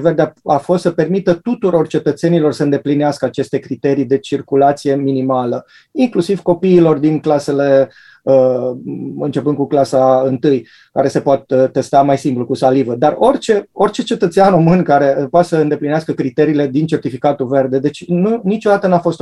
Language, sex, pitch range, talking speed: Romanian, male, 140-165 Hz, 145 wpm